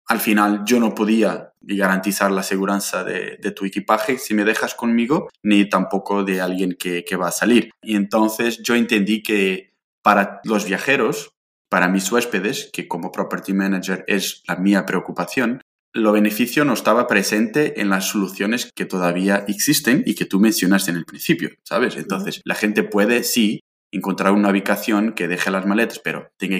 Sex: male